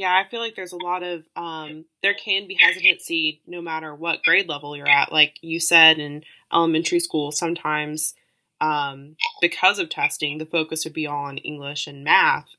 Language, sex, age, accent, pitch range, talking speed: English, female, 20-39, American, 150-170 Hz, 185 wpm